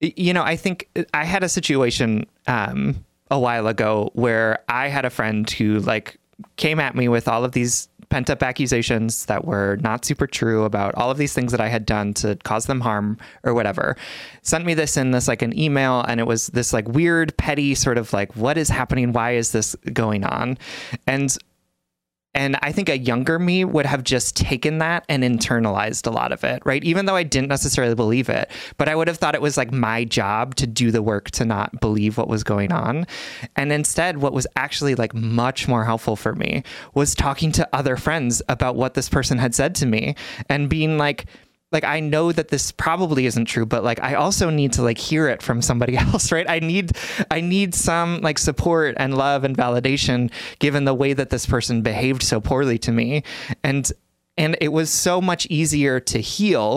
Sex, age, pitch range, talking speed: male, 30-49, 115-150 Hz, 210 wpm